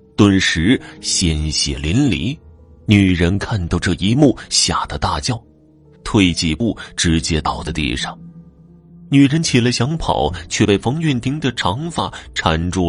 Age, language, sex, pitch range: 30-49, Chinese, male, 80-120 Hz